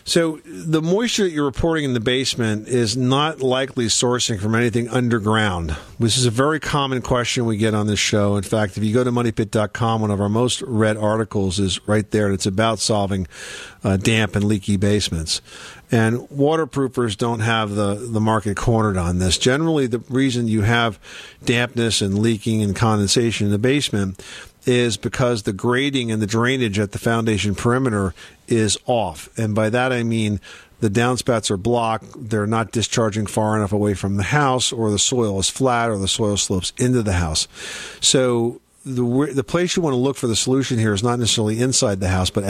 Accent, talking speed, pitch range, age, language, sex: American, 195 wpm, 105-125 Hz, 50-69, English, male